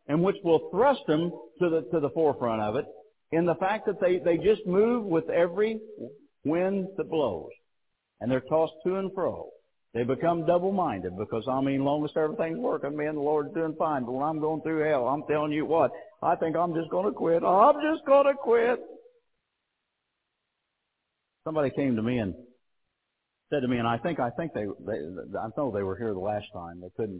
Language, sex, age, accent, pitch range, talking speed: English, male, 60-79, American, 115-170 Hz, 210 wpm